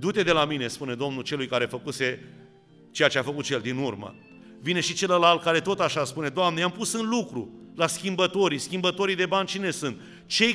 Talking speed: 210 wpm